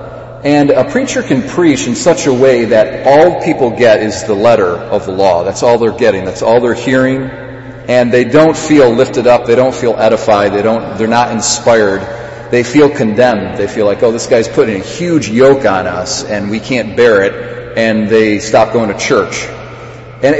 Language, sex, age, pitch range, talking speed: English, male, 40-59, 110-135 Hz, 205 wpm